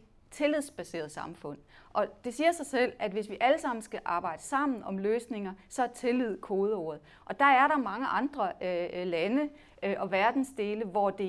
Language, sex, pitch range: Danish, female, 195-265 Hz